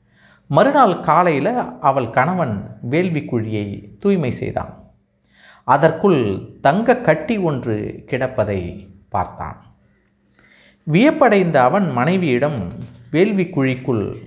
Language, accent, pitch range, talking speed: Tamil, native, 110-165 Hz, 70 wpm